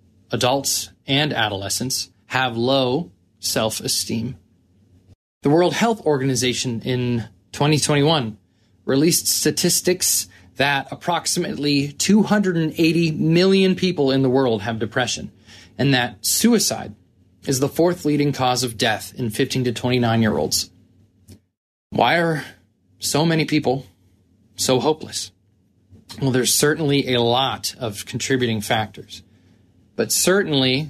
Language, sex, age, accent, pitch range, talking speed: English, male, 20-39, American, 105-140 Hz, 105 wpm